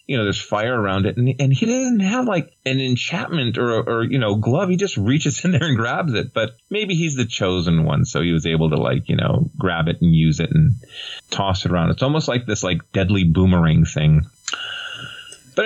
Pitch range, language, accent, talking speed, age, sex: 85-125 Hz, English, American, 225 wpm, 30-49, male